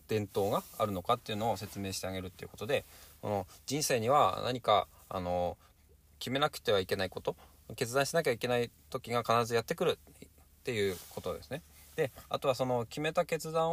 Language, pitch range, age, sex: Japanese, 80-115 Hz, 20-39, male